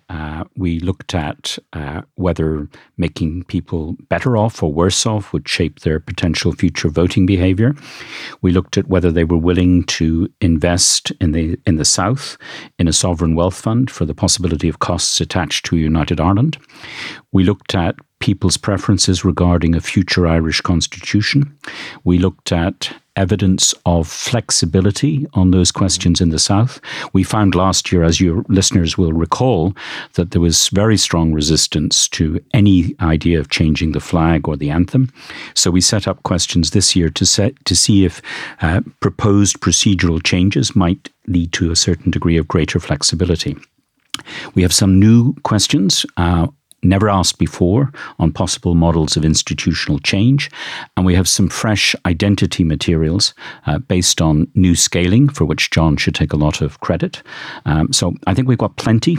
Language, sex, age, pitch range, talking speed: English, male, 50-69, 85-100 Hz, 165 wpm